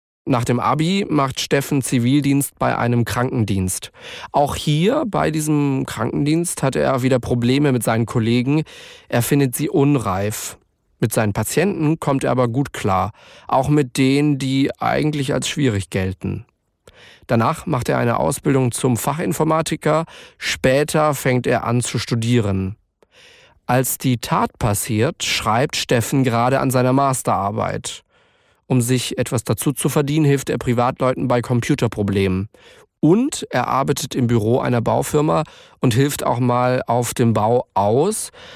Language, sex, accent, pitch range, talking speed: German, male, German, 120-145 Hz, 140 wpm